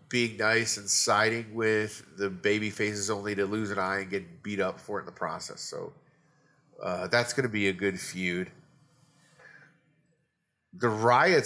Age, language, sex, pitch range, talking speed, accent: 30-49, English, male, 100-120 Hz, 175 wpm, American